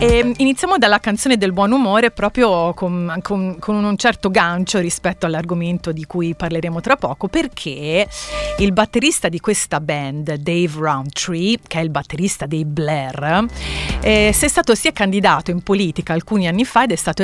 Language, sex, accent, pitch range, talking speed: Italian, female, native, 160-200 Hz, 170 wpm